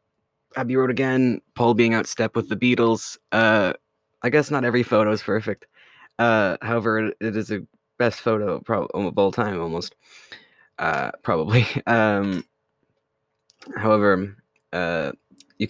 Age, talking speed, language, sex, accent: 20-39, 140 wpm, English, male, American